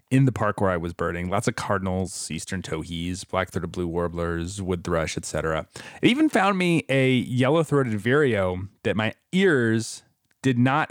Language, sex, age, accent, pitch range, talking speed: English, male, 30-49, American, 95-130 Hz, 170 wpm